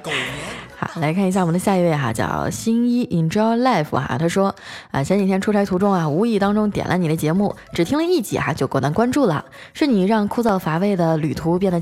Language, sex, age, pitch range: Chinese, female, 20-39, 170-220 Hz